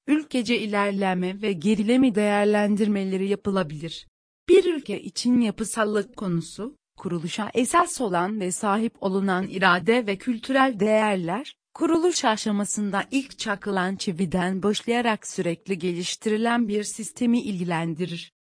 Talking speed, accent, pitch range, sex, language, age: 105 wpm, native, 190-240 Hz, female, Turkish, 40-59